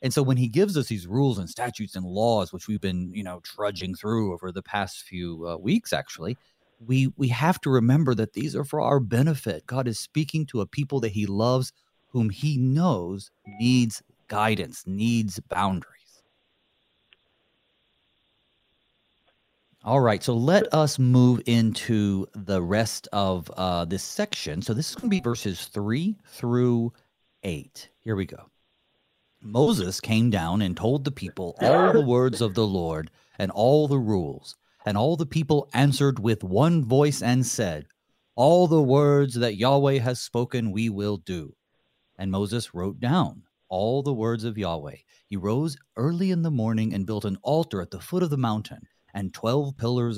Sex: male